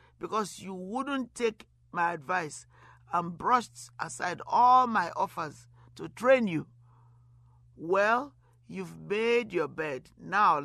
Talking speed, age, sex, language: 120 wpm, 50-69, male, English